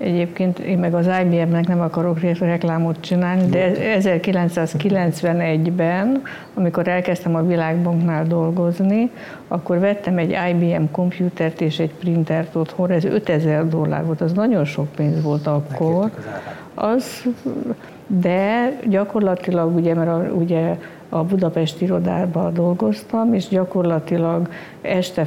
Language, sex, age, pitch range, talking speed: Hungarian, female, 60-79, 165-185 Hz, 115 wpm